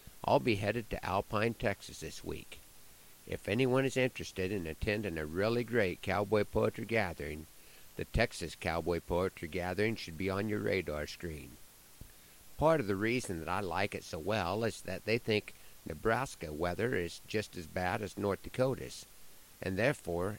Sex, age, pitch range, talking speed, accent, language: male, 50-69, 90-115 Hz, 165 wpm, American, English